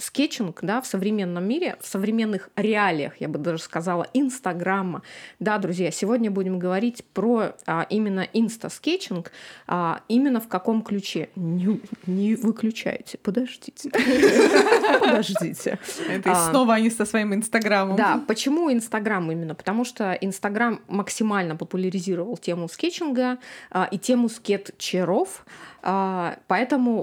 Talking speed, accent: 115 wpm, native